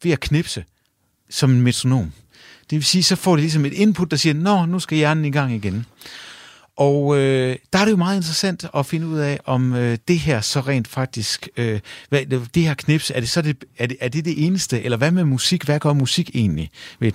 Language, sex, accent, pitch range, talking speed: Danish, male, native, 110-155 Hz, 235 wpm